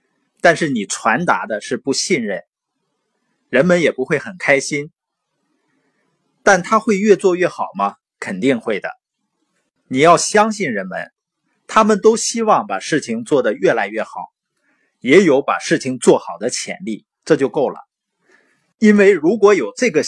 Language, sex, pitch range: Chinese, male, 125-210 Hz